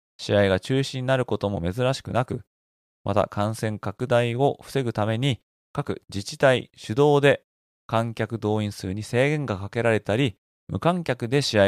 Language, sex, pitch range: Japanese, male, 100-135 Hz